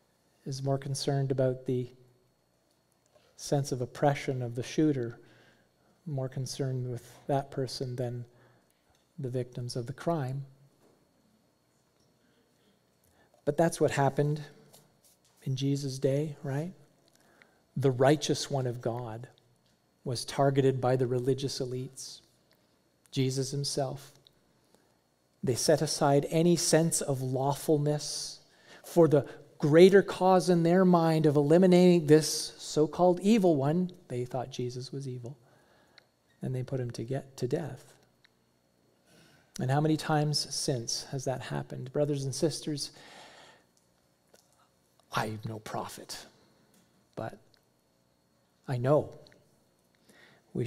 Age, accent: 40-59, American